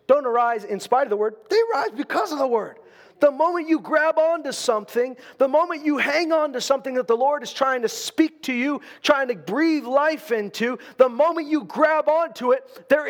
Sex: male